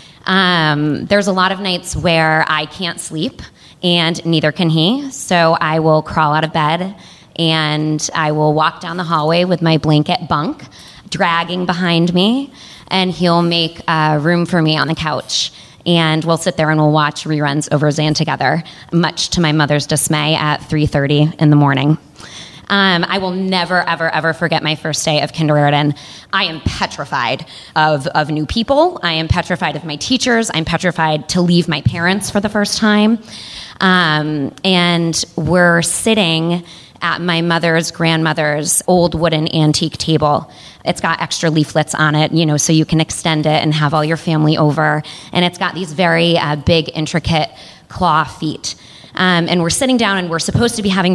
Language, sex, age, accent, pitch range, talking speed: English, female, 20-39, American, 155-175 Hz, 180 wpm